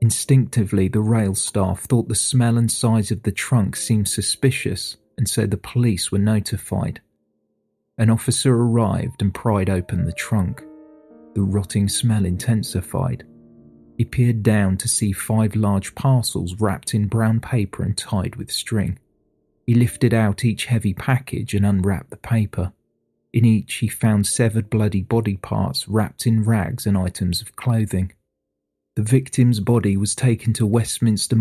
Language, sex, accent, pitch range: English, male, British, 100-120 Hz